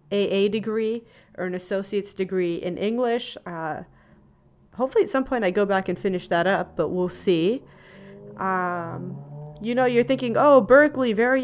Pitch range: 180-220 Hz